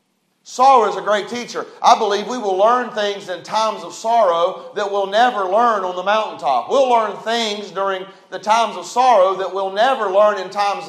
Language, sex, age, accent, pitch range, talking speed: English, male, 40-59, American, 195-240 Hz, 200 wpm